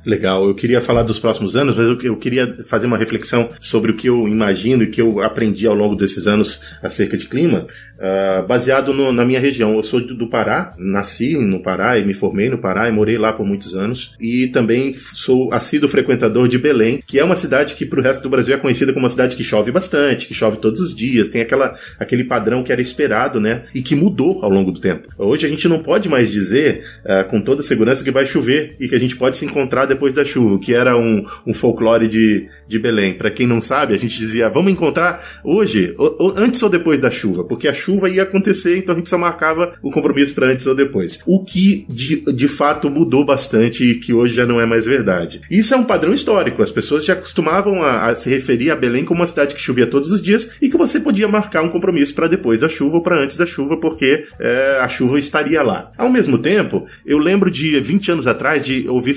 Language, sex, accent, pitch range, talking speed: Portuguese, male, Brazilian, 115-150 Hz, 235 wpm